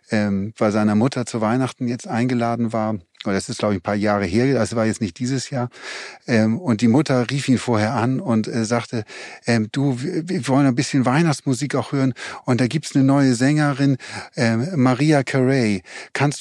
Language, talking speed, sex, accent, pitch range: German, 180 wpm, male, German, 120-150 Hz